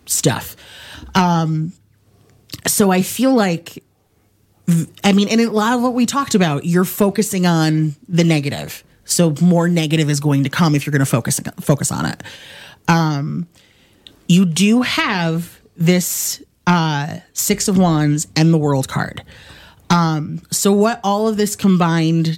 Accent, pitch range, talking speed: American, 150-190 Hz, 150 wpm